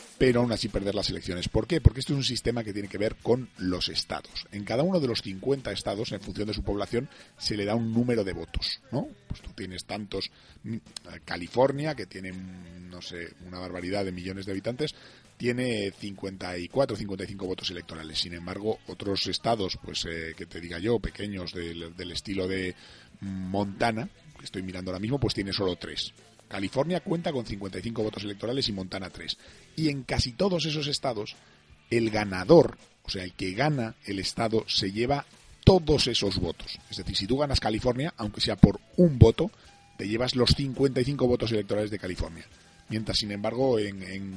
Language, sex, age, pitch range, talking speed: Spanish, male, 40-59, 95-120 Hz, 190 wpm